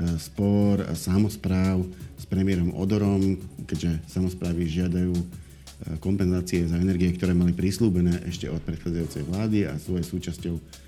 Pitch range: 85-105 Hz